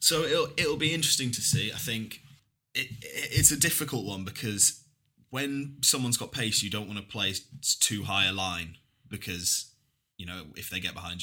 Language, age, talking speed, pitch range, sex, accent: English, 20-39, 180 wpm, 95-115 Hz, male, British